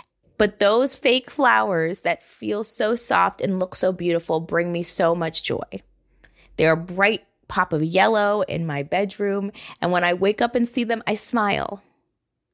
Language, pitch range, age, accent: English, 175-225 Hz, 20-39, American